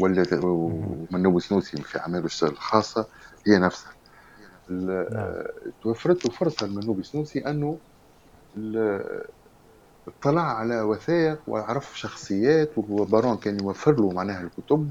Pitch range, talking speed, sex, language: 90-140 Hz, 95 wpm, male, Arabic